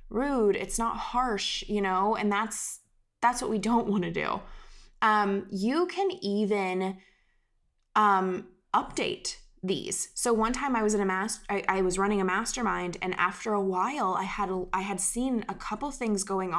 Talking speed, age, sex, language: 175 wpm, 20-39, female, English